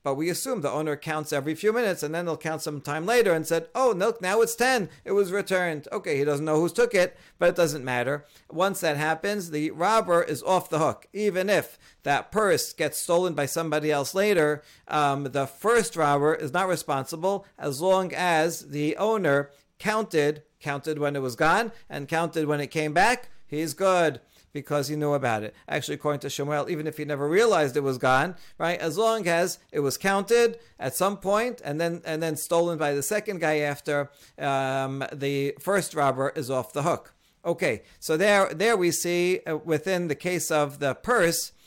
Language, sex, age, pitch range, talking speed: English, male, 50-69, 145-175 Hz, 200 wpm